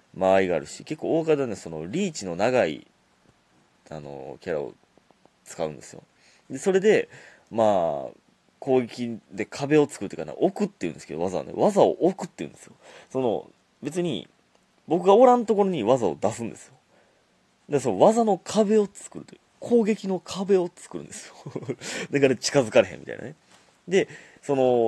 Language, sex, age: Japanese, male, 30-49